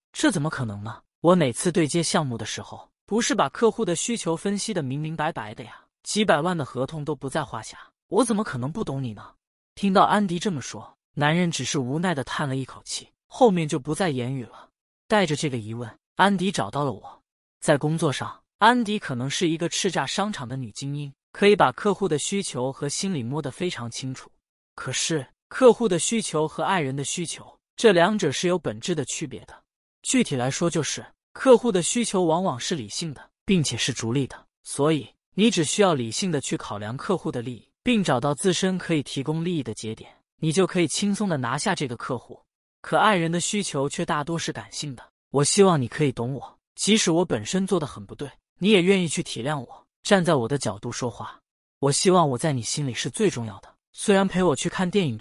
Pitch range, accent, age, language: 130-185 Hz, native, 20-39, Chinese